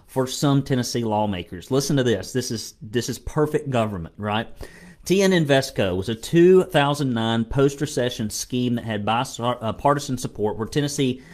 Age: 40-59